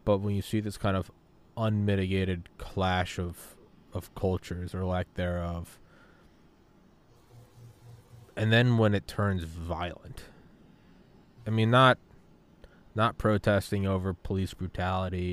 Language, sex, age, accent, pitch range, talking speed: English, male, 20-39, American, 90-105 Hz, 115 wpm